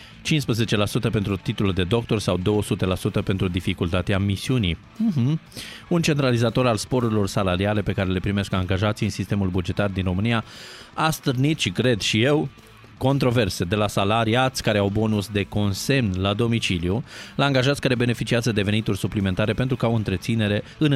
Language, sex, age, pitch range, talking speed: Romanian, male, 20-39, 100-125 Hz, 155 wpm